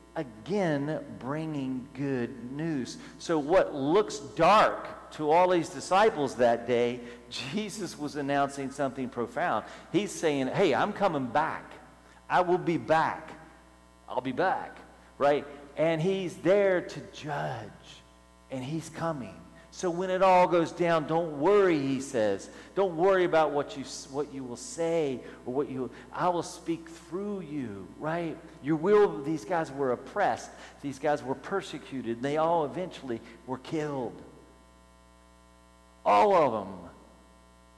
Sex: male